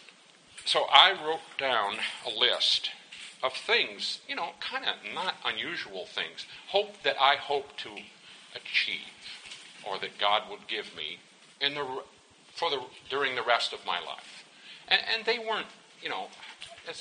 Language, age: English, 50-69